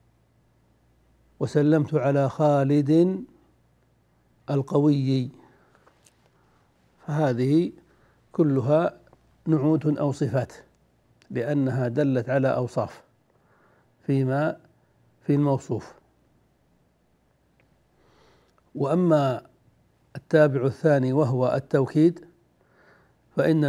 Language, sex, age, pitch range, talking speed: Arabic, male, 60-79, 135-155 Hz, 55 wpm